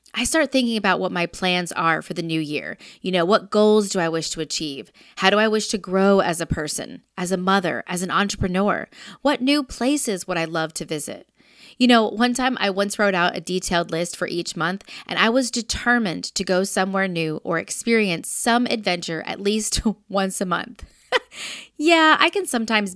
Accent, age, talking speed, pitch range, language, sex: American, 20-39, 205 wpm, 175-230 Hz, English, female